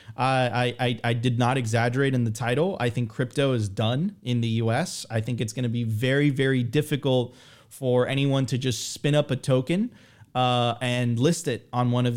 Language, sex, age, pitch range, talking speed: English, male, 30-49, 120-135 Hz, 200 wpm